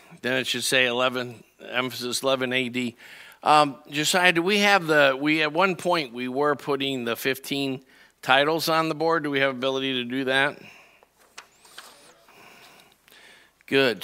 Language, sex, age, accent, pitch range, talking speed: English, male, 50-69, American, 130-155 Hz, 150 wpm